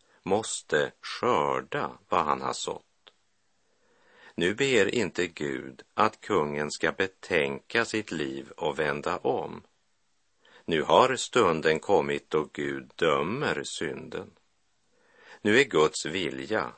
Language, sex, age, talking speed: Swedish, male, 50-69, 110 wpm